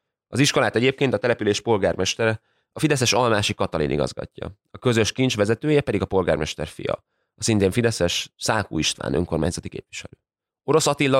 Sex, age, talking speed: male, 20-39, 150 wpm